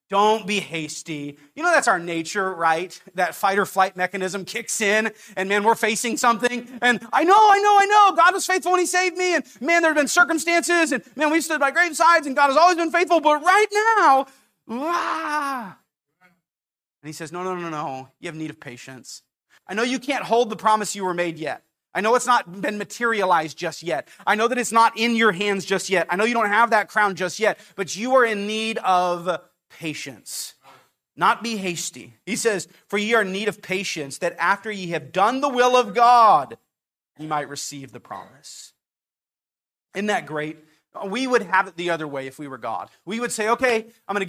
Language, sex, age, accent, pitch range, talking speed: English, male, 30-49, American, 175-250 Hz, 220 wpm